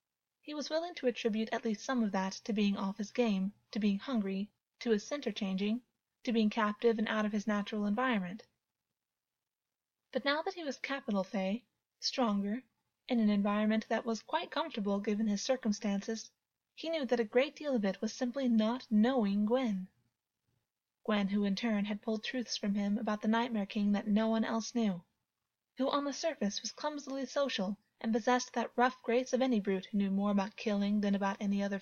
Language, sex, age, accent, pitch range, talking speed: English, female, 20-39, American, 205-250 Hz, 195 wpm